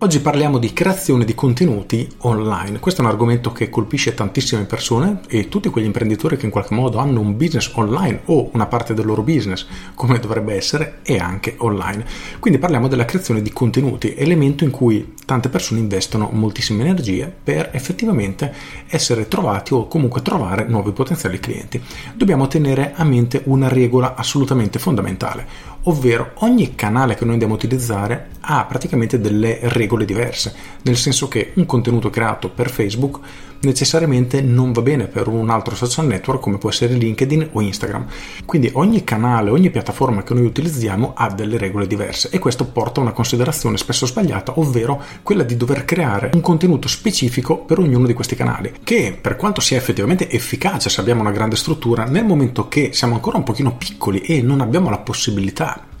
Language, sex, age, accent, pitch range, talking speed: Italian, male, 40-59, native, 110-140 Hz, 175 wpm